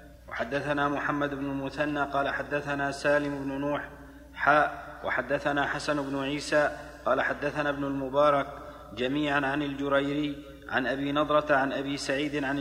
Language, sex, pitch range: Arabic, male, 140-150 Hz